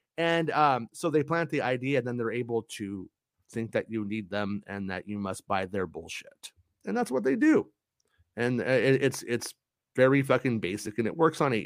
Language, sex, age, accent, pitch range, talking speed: English, male, 30-49, American, 110-150 Hz, 205 wpm